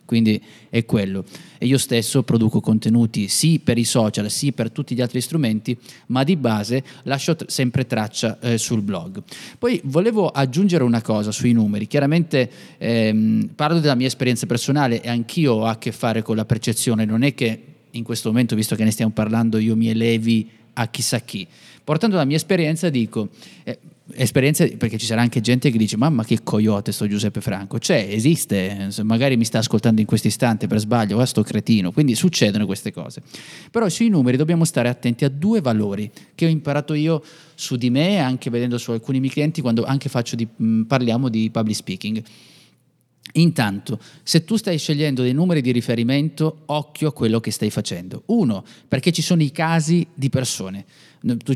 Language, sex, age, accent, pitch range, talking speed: Italian, male, 20-39, native, 115-150 Hz, 185 wpm